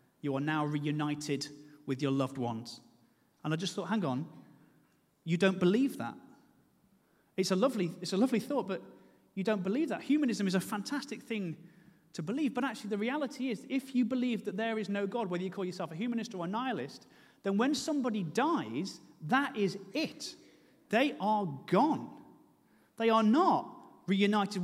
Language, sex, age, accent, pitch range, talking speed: English, male, 40-59, British, 195-275 Hz, 180 wpm